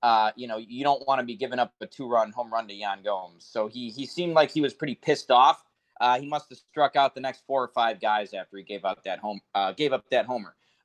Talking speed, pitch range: 275 wpm, 130-200 Hz